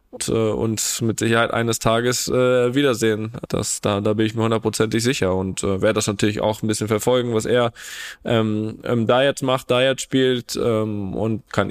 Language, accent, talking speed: German, German, 190 wpm